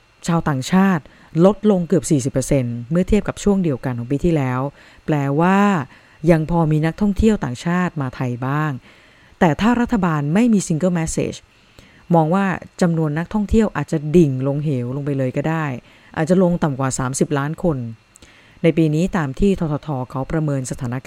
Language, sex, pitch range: English, female, 135-180 Hz